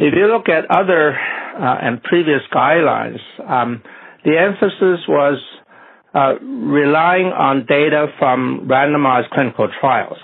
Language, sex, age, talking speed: English, male, 60-79, 125 wpm